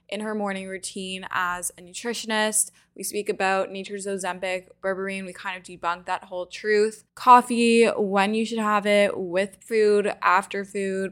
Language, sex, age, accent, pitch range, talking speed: English, female, 10-29, American, 200-240 Hz, 160 wpm